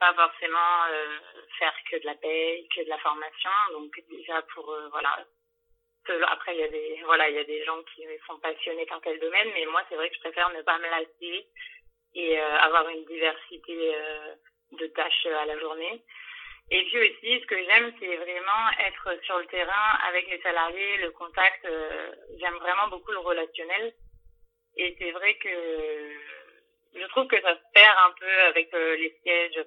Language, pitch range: French, 160-220 Hz